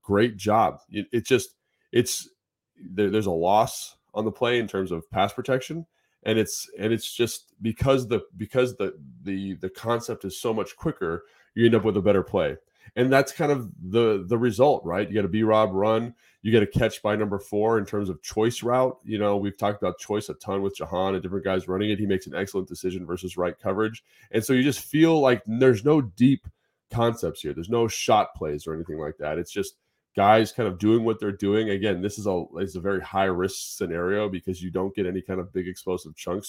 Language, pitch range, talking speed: English, 95-115 Hz, 225 wpm